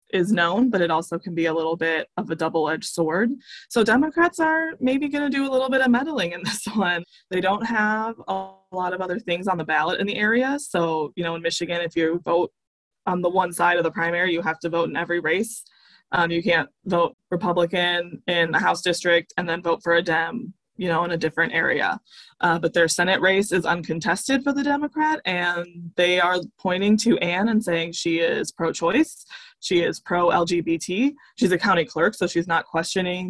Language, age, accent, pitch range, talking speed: English, 20-39, American, 170-220 Hz, 215 wpm